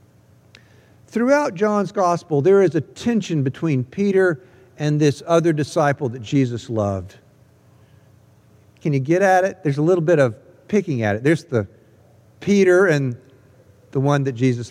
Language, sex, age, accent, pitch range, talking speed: English, male, 50-69, American, 125-205 Hz, 150 wpm